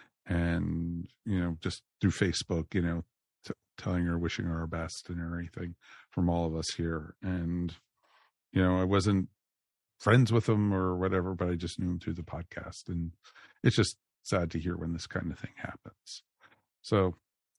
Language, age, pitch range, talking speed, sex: English, 50-69, 85-100 Hz, 175 wpm, male